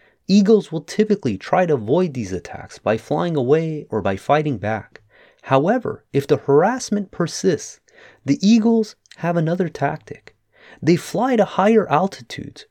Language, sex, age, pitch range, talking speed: English, male, 30-49, 135-210 Hz, 140 wpm